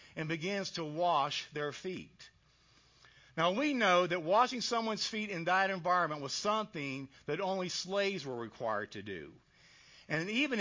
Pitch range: 145-210 Hz